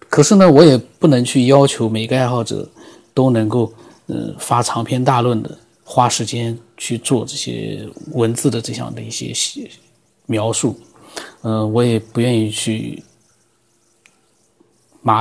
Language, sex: Chinese, male